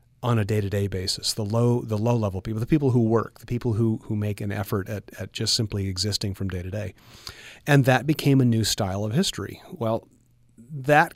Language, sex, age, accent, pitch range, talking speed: English, male, 40-59, American, 105-130 Hz, 215 wpm